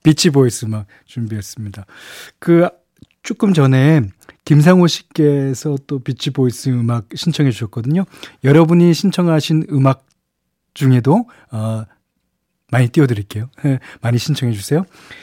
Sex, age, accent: male, 40-59, native